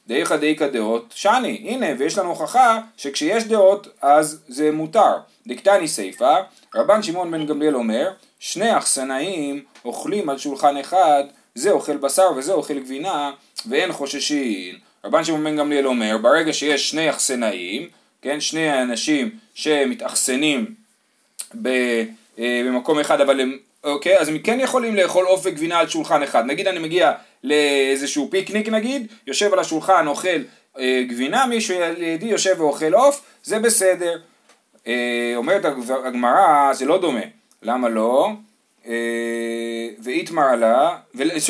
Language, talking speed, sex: Hebrew, 130 wpm, male